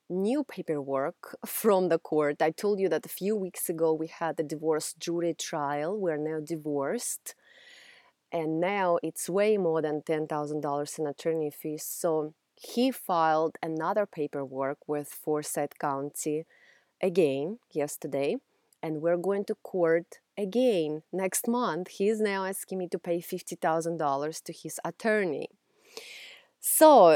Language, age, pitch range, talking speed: English, 30-49, 155-215 Hz, 135 wpm